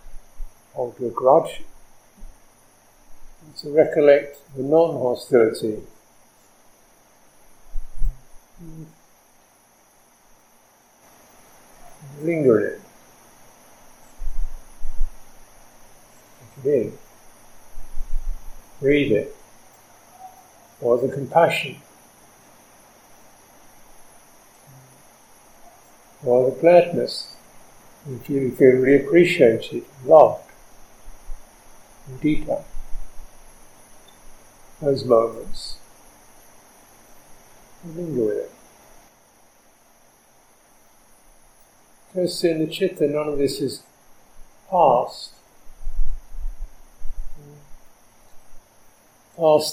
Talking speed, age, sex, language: 55 wpm, 50-69, male, English